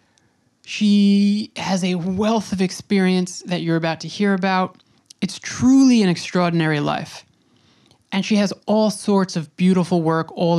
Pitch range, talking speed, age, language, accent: 160-195 Hz, 145 wpm, 20-39, English, American